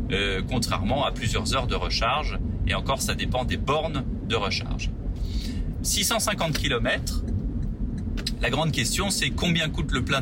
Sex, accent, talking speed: male, French, 140 wpm